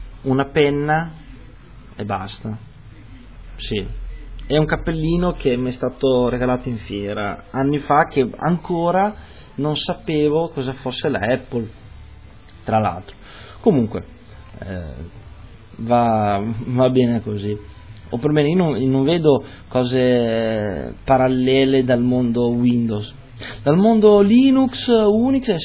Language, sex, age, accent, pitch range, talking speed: Italian, male, 20-39, native, 110-140 Hz, 110 wpm